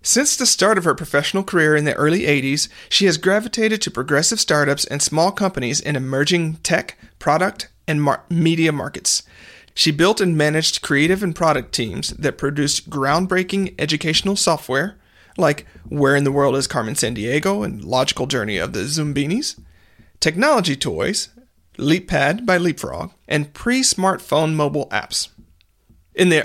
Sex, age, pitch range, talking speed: male, 40-59, 140-190 Hz, 145 wpm